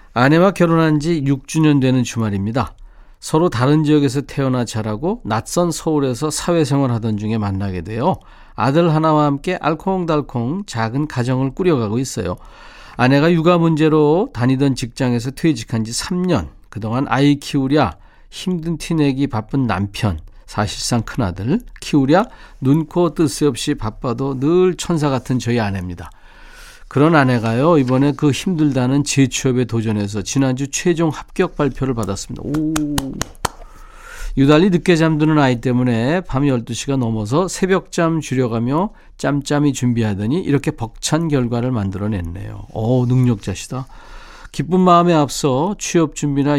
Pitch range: 115-155 Hz